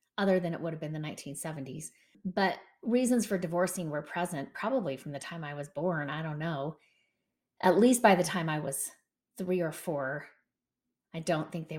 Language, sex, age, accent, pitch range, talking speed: English, female, 30-49, American, 170-200 Hz, 195 wpm